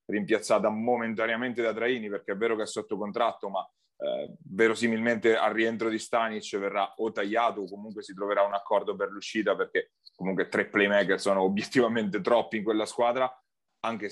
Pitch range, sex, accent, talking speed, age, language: 105-115 Hz, male, native, 170 wpm, 30-49, Italian